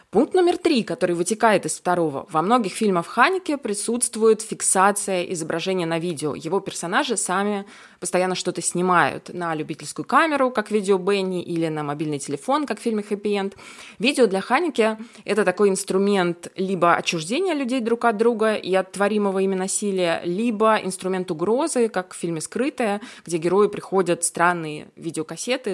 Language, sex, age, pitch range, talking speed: Russian, female, 20-39, 170-225 Hz, 150 wpm